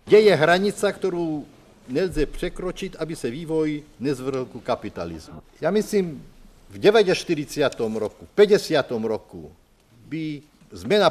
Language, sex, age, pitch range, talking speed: Czech, male, 50-69, 150-195 Hz, 120 wpm